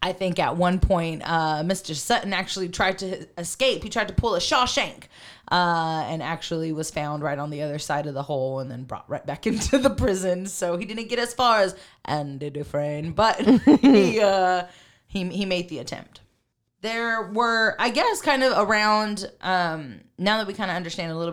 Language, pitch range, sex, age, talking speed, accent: English, 160-205 Hz, female, 20-39, 205 wpm, American